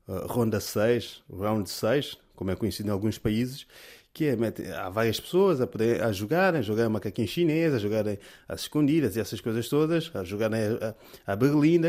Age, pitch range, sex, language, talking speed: 20-39, 115-175 Hz, male, Portuguese, 205 wpm